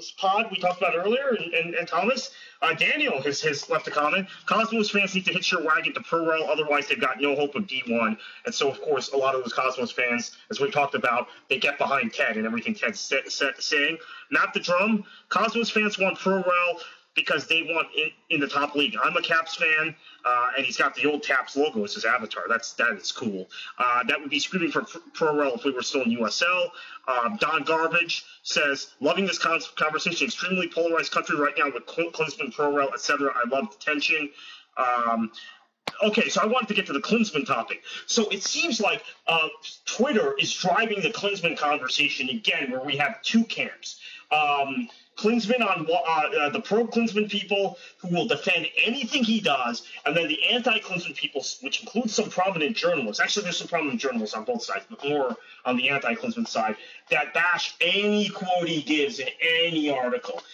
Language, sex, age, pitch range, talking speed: English, male, 30-49, 145-220 Hz, 195 wpm